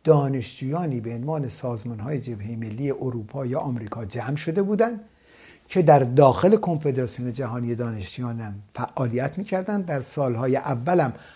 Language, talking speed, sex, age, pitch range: Persian, 125 wpm, male, 60-79, 120-165 Hz